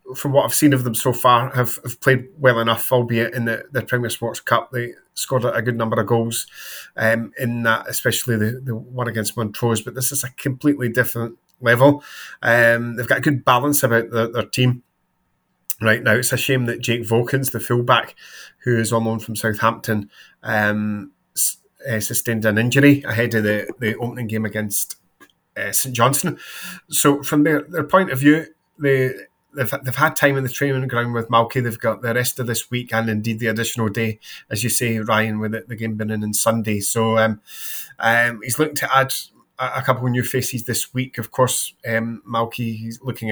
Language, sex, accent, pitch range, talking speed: English, male, British, 110-130 Hz, 200 wpm